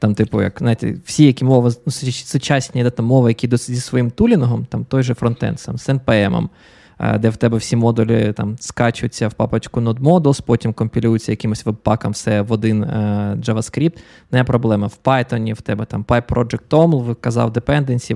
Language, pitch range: Ukrainian, 115-135 Hz